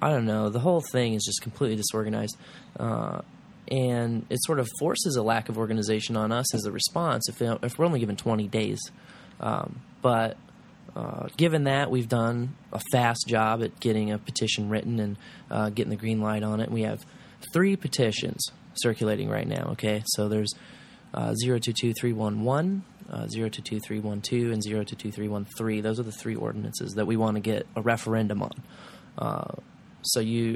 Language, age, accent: English, 20-39, American